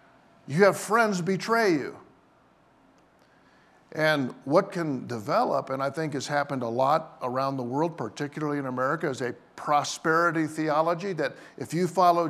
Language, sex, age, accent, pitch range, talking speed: English, male, 50-69, American, 135-175 Hz, 145 wpm